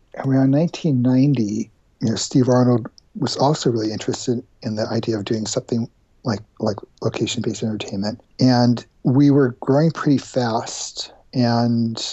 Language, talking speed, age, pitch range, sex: English, 140 wpm, 50-69, 110-135 Hz, male